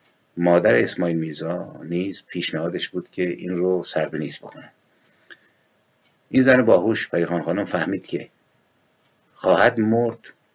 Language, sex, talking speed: Persian, male, 120 wpm